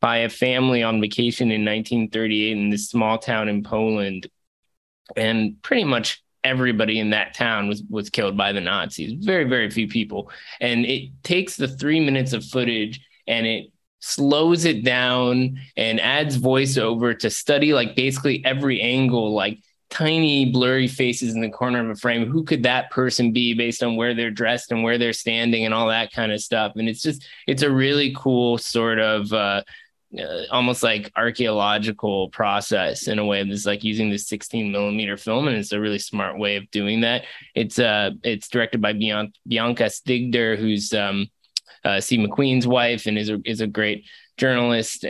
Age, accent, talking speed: 20-39, American, 185 wpm